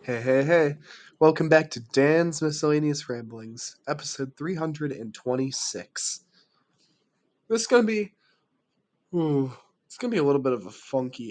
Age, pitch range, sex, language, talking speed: 20-39, 120-155 Hz, male, English, 135 wpm